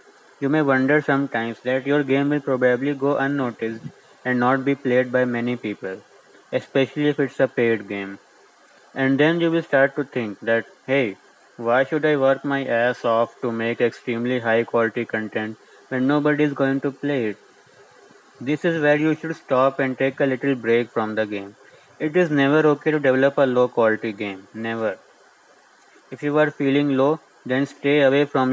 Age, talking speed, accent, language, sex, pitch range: 20-39, 185 wpm, Indian, English, male, 125-145 Hz